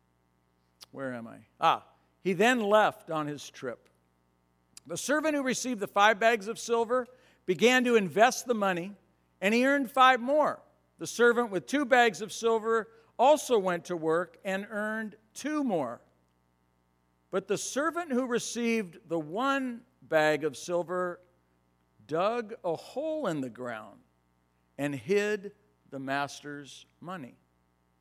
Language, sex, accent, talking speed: English, male, American, 140 wpm